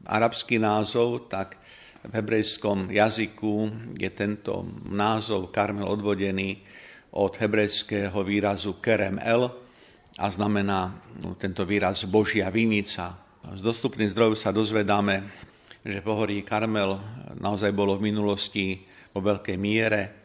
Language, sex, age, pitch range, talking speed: Slovak, male, 50-69, 100-110 Hz, 115 wpm